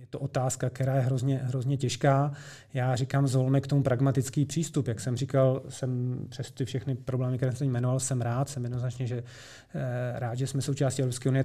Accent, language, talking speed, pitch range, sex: native, Czech, 190 wpm, 130-140 Hz, male